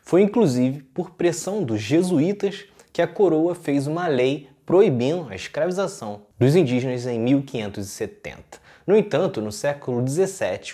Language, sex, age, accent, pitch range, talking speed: Portuguese, male, 20-39, Brazilian, 110-155 Hz, 135 wpm